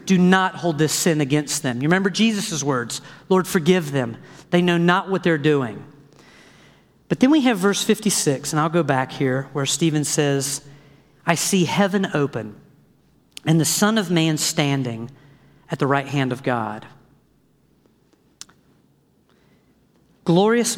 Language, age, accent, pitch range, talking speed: English, 40-59, American, 145-205 Hz, 145 wpm